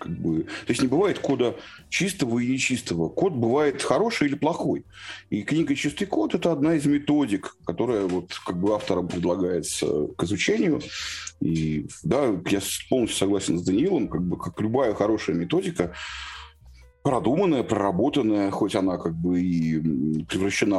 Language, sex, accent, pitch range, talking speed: Russian, male, native, 90-120 Hz, 125 wpm